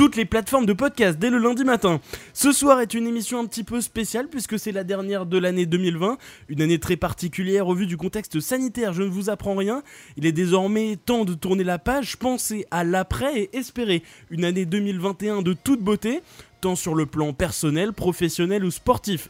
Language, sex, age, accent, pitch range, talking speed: French, male, 20-39, French, 170-230 Hz, 205 wpm